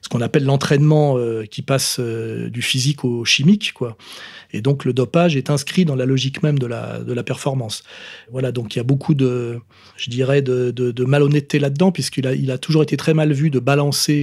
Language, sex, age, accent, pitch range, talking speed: French, male, 40-59, French, 125-150 Hz, 225 wpm